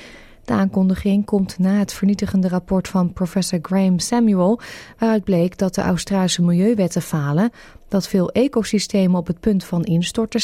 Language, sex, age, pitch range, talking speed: Dutch, female, 20-39, 175-215 Hz, 150 wpm